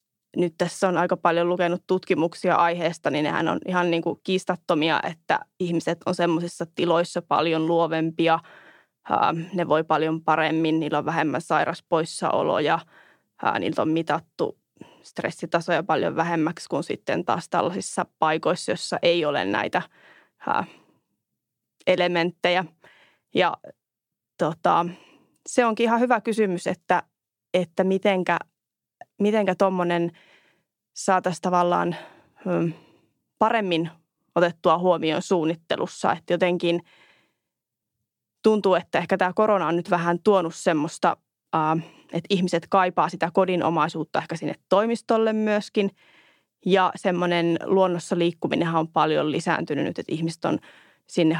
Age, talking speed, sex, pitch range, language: 20-39, 115 wpm, female, 165-185 Hz, Finnish